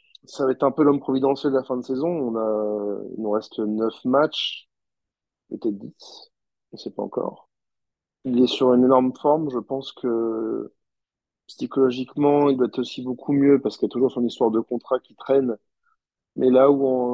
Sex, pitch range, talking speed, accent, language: male, 115-140 Hz, 200 wpm, French, French